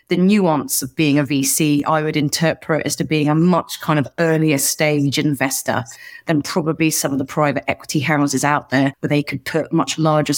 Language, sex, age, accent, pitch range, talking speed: English, female, 30-49, British, 145-165 Hz, 200 wpm